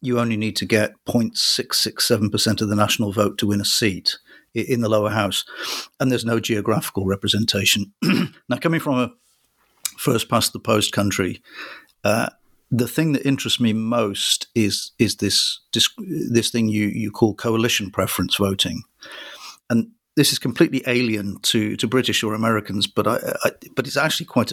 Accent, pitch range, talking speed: British, 105-120 Hz, 165 wpm